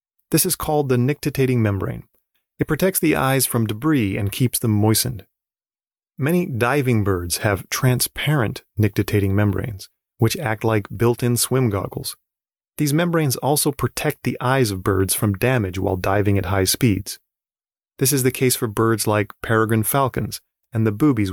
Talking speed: 160 wpm